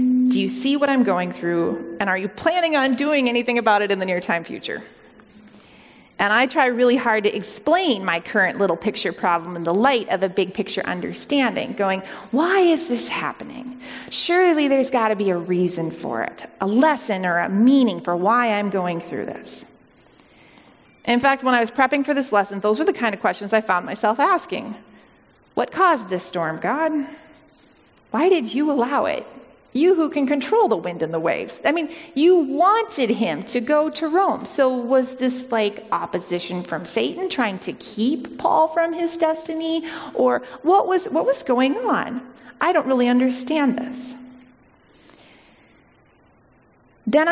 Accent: American